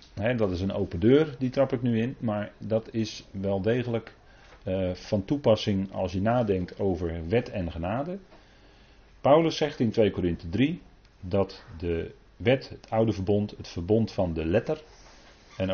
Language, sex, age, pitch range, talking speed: Dutch, male, 40-59, 95-125 Hz, 165 wpm